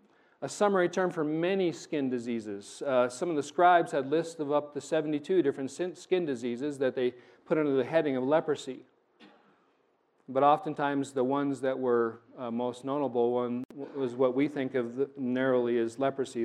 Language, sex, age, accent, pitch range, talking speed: English, male, 40-59, American, 135-180 Hz, 170 wpm